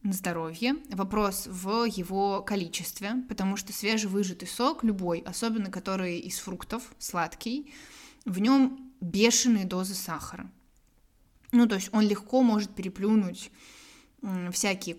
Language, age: Russian, 20-39